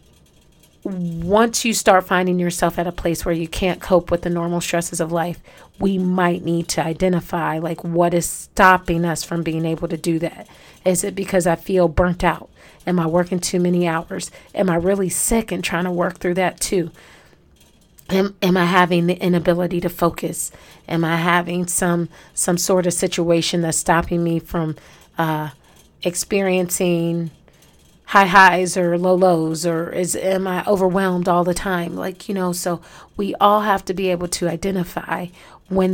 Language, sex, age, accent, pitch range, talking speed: English, female, 40-59, American, 170-190 Hz, 175 wpm